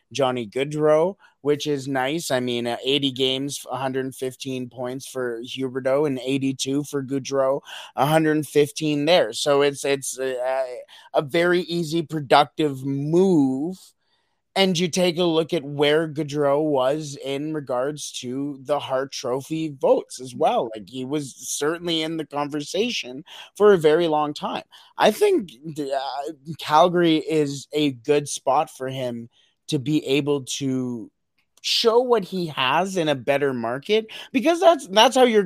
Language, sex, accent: English, male, American